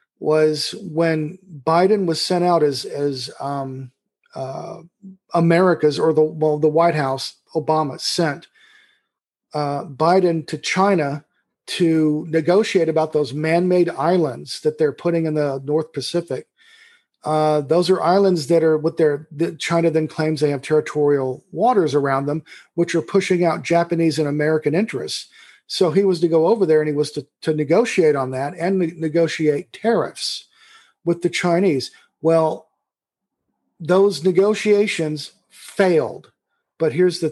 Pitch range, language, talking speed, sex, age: 150-175 Hz, English, 145 wpm, male, 40-59